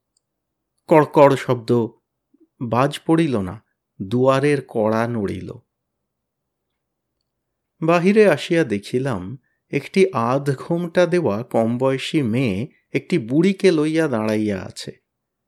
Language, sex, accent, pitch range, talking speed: Bengali, male, native, 110-155 Hz, 85 wpm